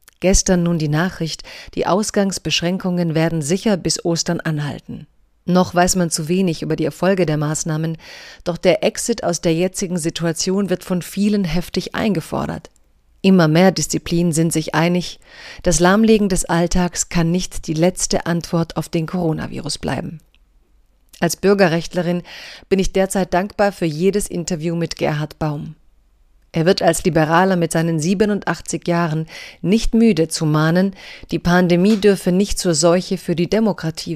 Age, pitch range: 40-59, 165-190 Hz